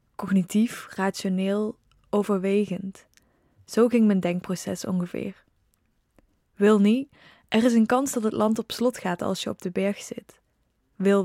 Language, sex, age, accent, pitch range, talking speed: Dutch, female, 10-29, Dutch, 195-225 Hz, 145 wpm